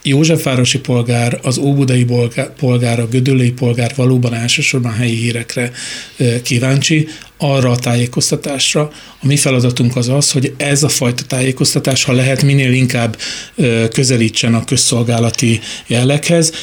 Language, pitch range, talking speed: Hungarian, 120-145 Hz, 125 wpm